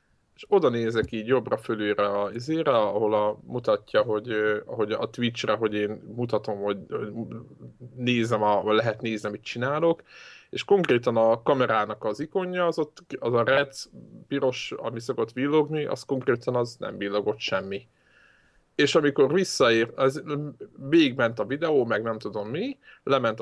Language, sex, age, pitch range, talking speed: Hungarian, male, 20-39, 105-140 Hz, 160 wpm